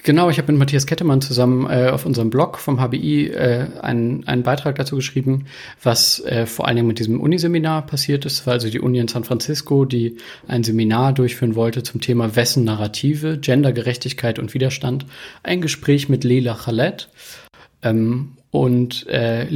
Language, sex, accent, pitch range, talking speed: German, male, German, 120-135 Hz, 170 wpm